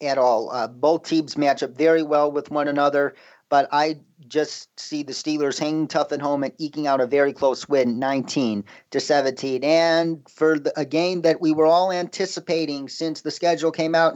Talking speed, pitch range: 195 wpm, 150-185 Hz